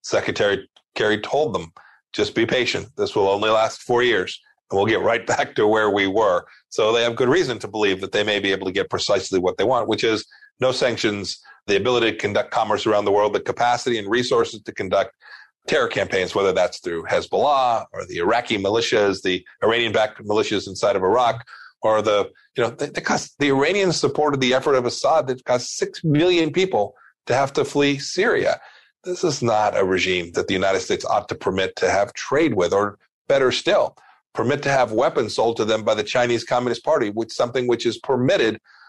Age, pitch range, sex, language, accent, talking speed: 40-59, 110-135 Hz, male, English, American, 205 wpm